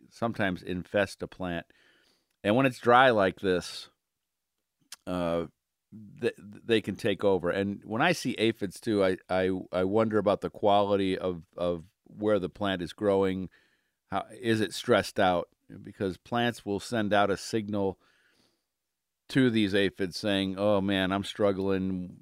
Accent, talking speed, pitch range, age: American, 150 wpm, 95-115 Hz, 50-69